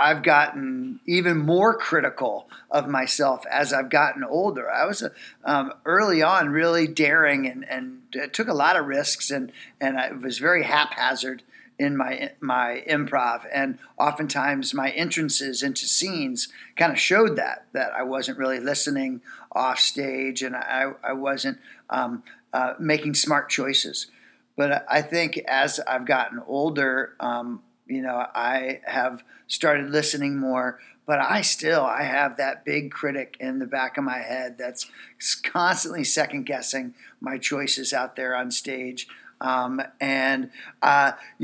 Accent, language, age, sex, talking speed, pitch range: American, English, 50-69, male, 150 wpm, 130-175 Hz